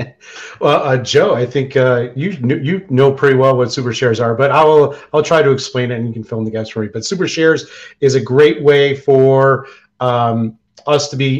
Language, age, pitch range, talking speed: English, 40-59, 115-135 Hz, 235 wpm